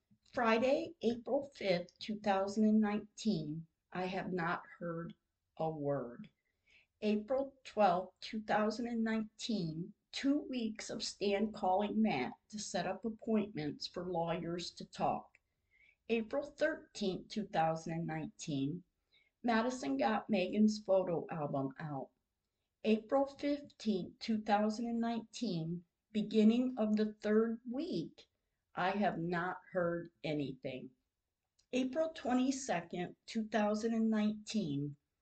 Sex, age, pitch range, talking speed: female, 50-69, 170-225 Hz, 90 wpm